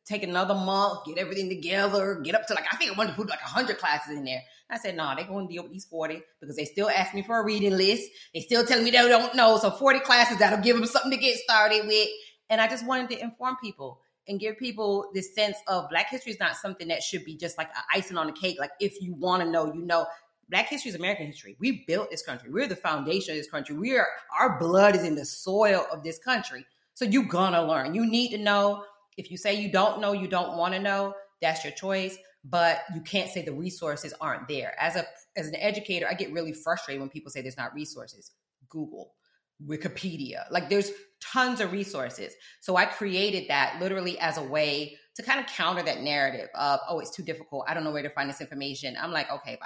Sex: female